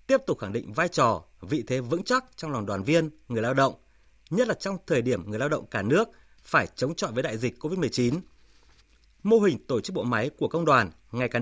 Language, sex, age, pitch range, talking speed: Vietnamese, male, 20-39, 120-175 Hz, 235 wpm